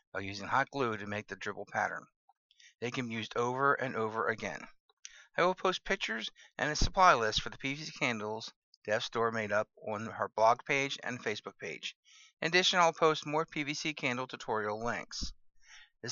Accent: American